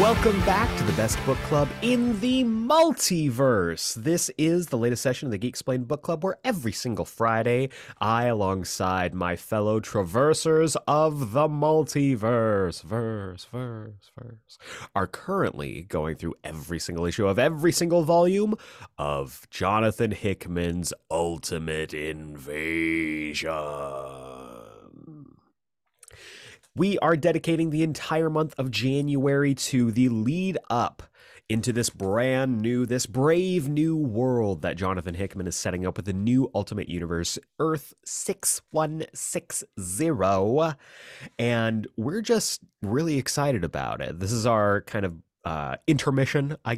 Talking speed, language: 130 wpm, English